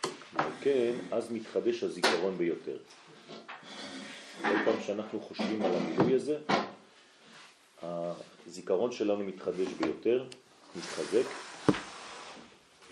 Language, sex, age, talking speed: French, male, 40-59, 85 wpm